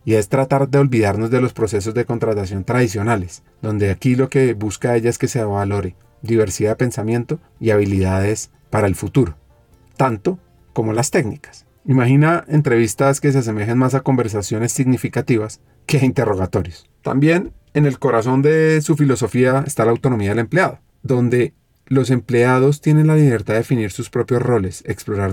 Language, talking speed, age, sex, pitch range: Spanish, 165 wpm, 30-49, male, 105-135 Hz